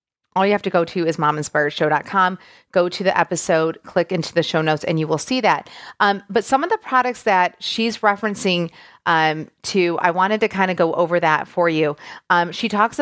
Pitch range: 170-210 Hz